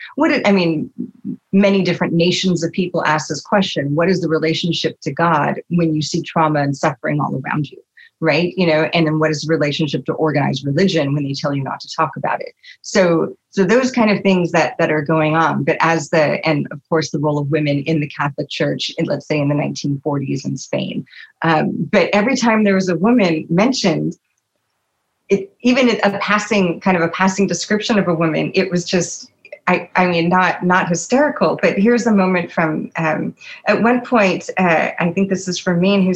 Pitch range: 160-200 Hz